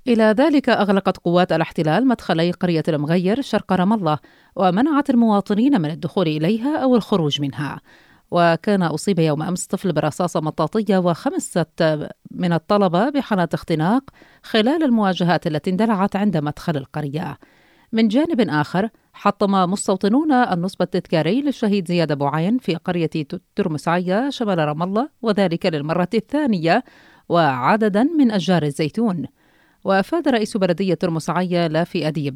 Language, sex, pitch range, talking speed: Arabic, female, 165-220 Hz, 125 wpm